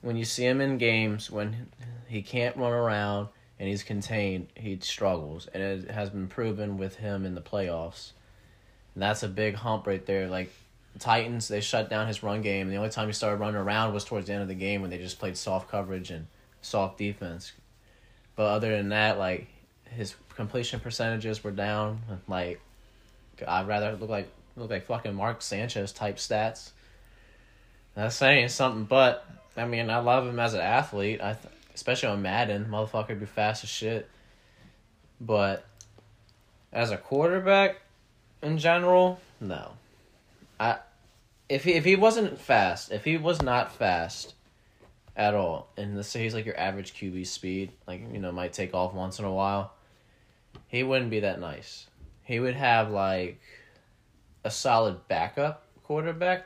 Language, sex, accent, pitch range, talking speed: English, male, American, 100-120 Hz, 175 wpm